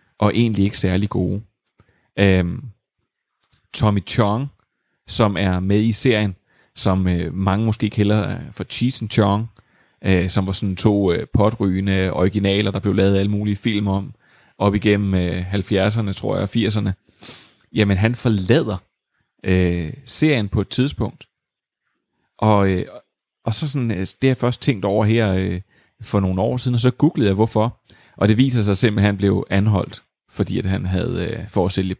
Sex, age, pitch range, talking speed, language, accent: male, 30-49, 100-120 Hz, 170 wpm, Danish, native